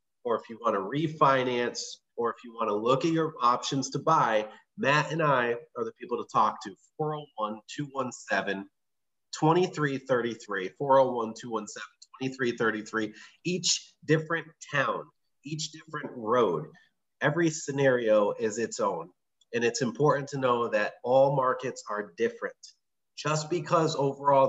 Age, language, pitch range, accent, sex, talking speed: 30-49, English, 115-155 Hz, American, male, 125 wpm